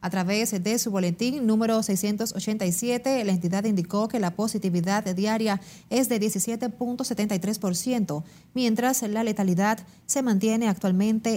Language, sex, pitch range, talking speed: Spanish, female, 190-230 Hz, 125 wpm